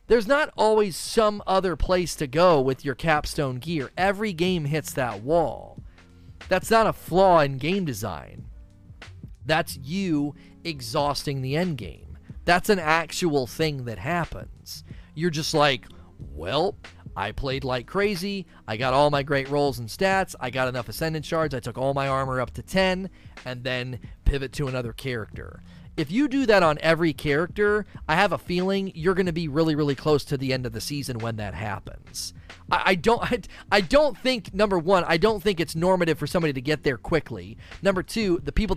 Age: 40-59